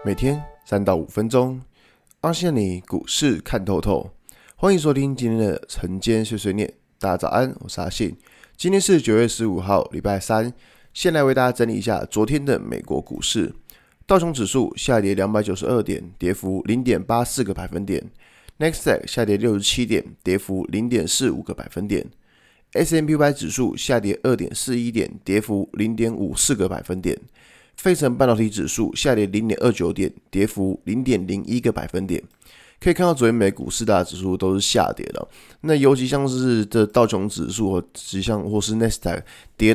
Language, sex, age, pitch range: Chinese, male, 20-39, 100-135 Hz